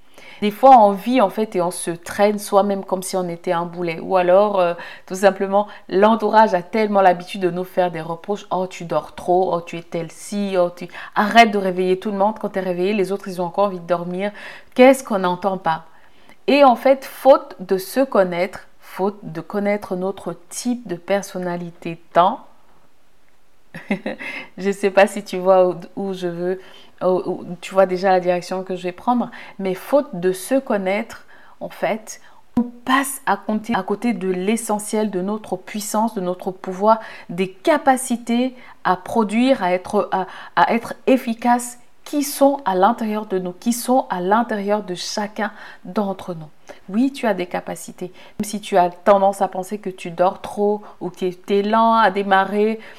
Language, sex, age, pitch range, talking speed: French, female, 50-69, 185-220 Hz, 185 wpm